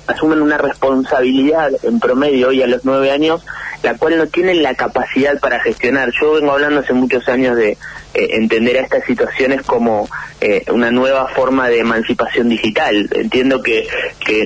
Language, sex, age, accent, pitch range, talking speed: Spanish, male, 30-49, Argentinian, 120-155 Hz, 170 wpm